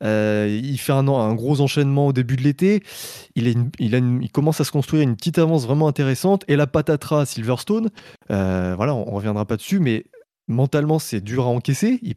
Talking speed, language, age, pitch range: 215 wpm, French, 20-39, 120-170 Hz